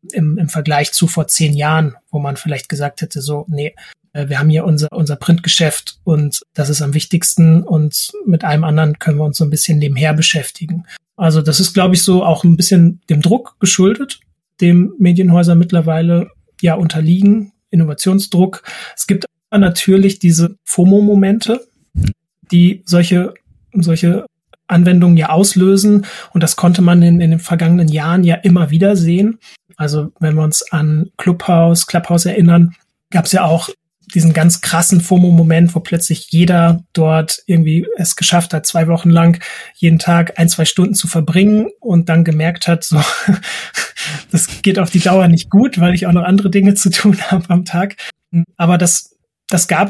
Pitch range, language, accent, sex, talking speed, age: 165-185 Hz, German, German, male, 170 wpm, 30-49